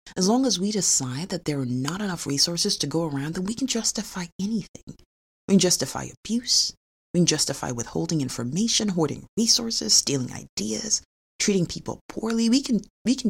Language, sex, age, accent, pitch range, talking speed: English, female, 30-49, American, 160-215 Hz, 175 wpm